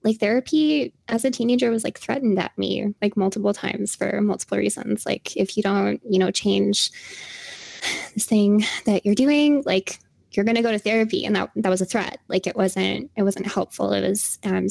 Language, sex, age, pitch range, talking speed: English, female, 10-29, 195-260 Hz, 205 wpm